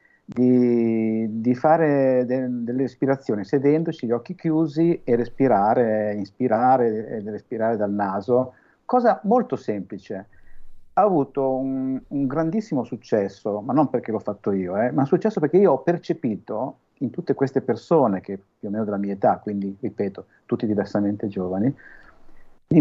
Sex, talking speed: male, 155 wpm